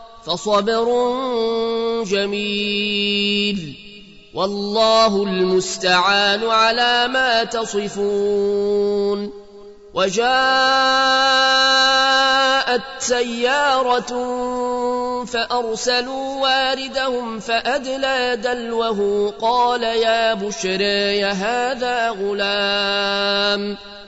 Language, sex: Arabic, male